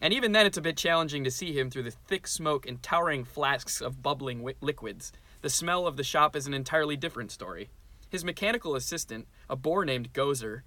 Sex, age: male, 20-39